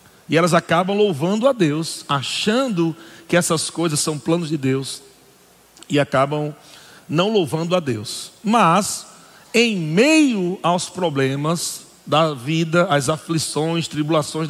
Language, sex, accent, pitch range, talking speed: Portuguese, male, Brazilian, 165-215 Hz, 125 wpm